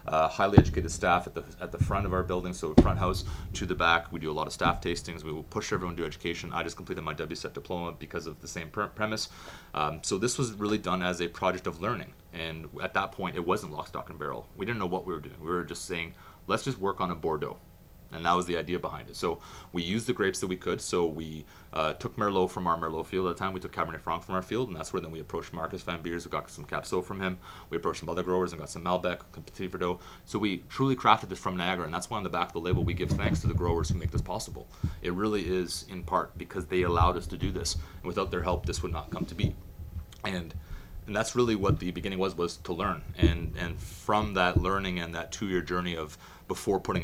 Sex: male